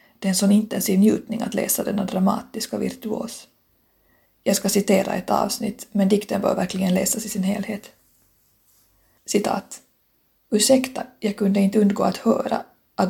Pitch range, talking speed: 200-230 Hz, 150 wpm